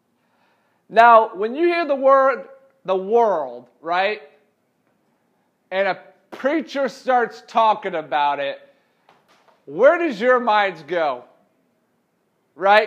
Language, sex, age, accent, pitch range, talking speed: English, male, 30-49, American, 180-240 Hz, 105 wpm